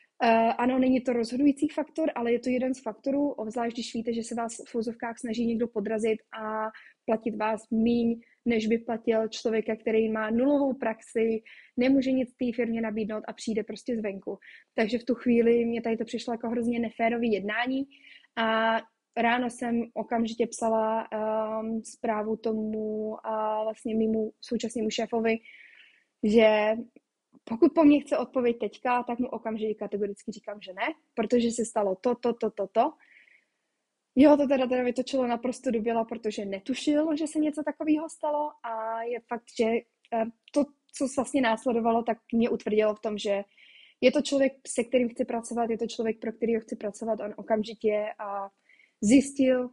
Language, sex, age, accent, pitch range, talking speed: Czech, female, 20-39, native, 220-250 Hz, 165 wpm